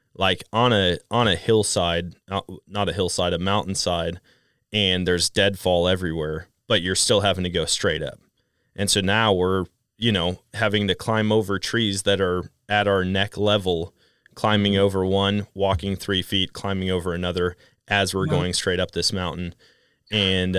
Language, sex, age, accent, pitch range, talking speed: English, male, 30-49, American, 90-100 Hz, 170 wpm